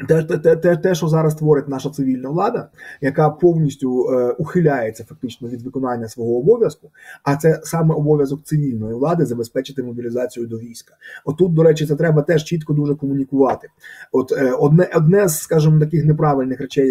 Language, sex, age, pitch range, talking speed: Ukrainian, male, 20-39, 135-165 Hz, 170 wpm